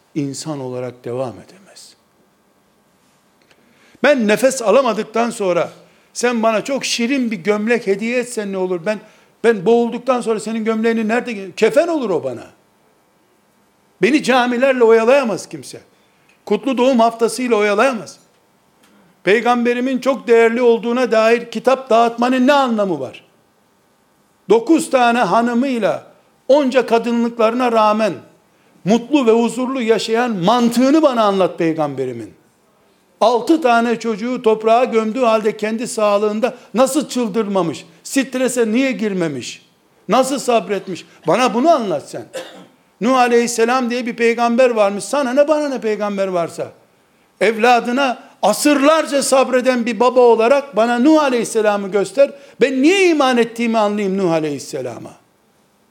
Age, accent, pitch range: 60-79, native, 210-255 Hz